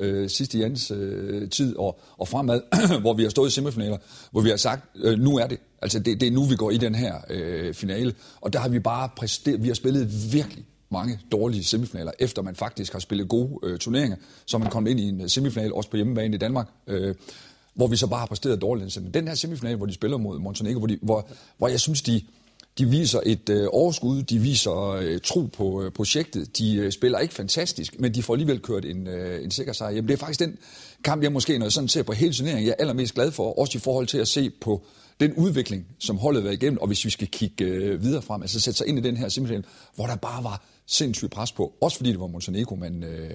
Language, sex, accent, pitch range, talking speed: Danish, male, native, 100-130 Hz, 240 wpm